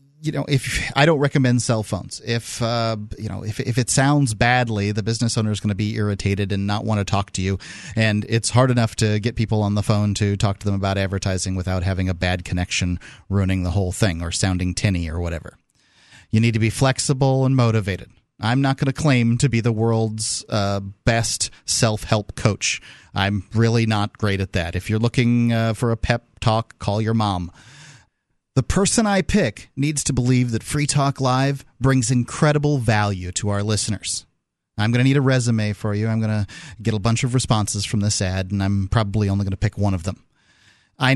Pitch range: 100-125 Hz